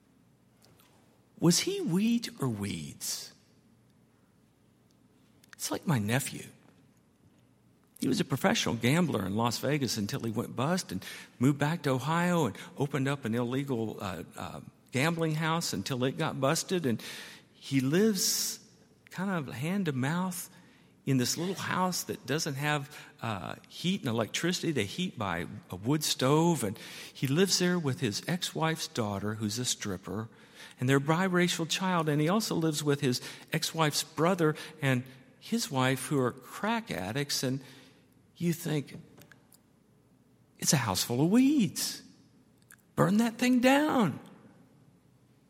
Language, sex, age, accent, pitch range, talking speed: English, male, 50-69, American, 130-185 Hz, 145 wpm